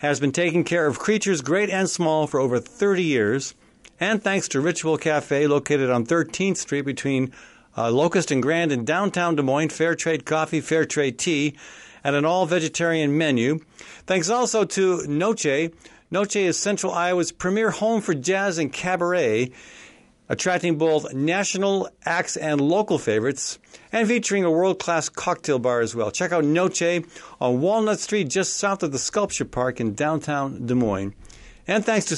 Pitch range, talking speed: 145-195 Hz, 165 wpm